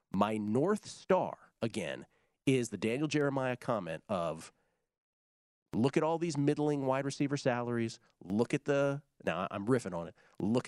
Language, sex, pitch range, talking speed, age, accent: English, male, 115-155 Hz, 150 wpm, 40-59, American